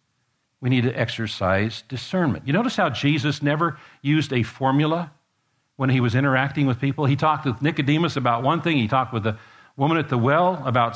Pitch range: 120-150 Hz